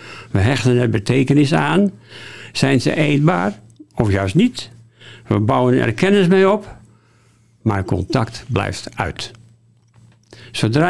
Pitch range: 115-150 Hz